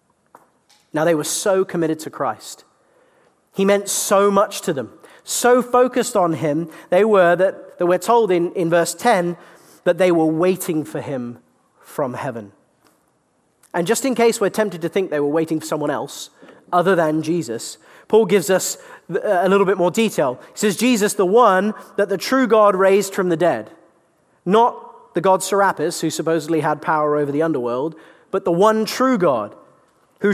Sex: male